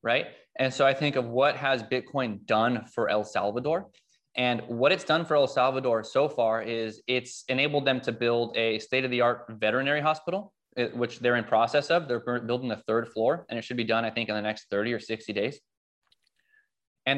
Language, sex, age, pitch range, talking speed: English, male, 20-39, 115-150 Hz, 200 wpm